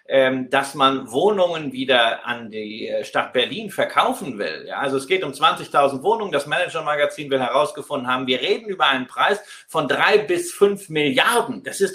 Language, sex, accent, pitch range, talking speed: German, male, German, 145-230 Hz, 170 wpm